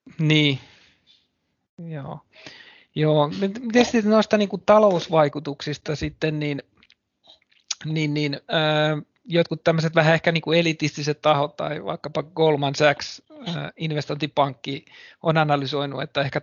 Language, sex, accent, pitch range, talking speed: Finnish, male, native, 140-160 Hz, 100 wpm